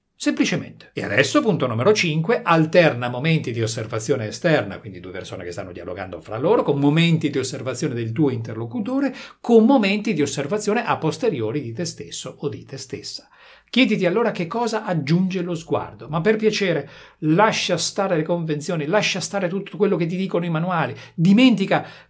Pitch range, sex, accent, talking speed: 130-195 Hz, male, native, 170 wpm